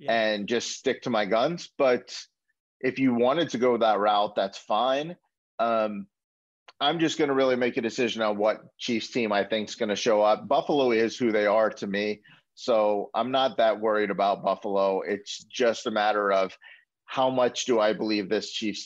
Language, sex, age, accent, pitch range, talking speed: English, male, 40-59, American, 105-135 Hz, 195 wpm